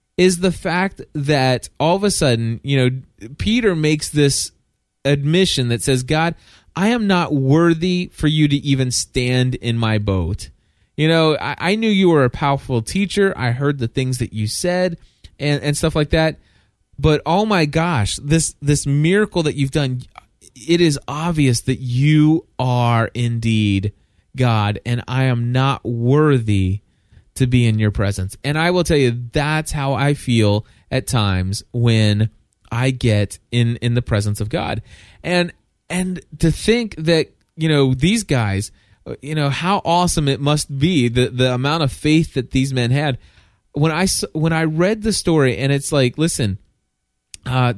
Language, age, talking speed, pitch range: English, 20-39, 170 wpm, 115-160 Hz